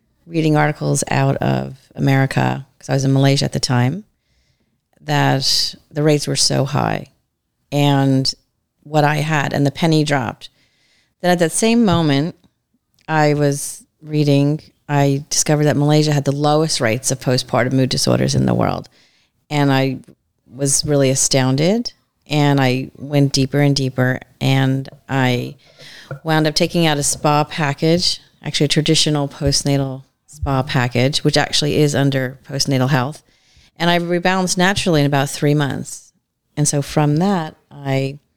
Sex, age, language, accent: female, 40-59, English, American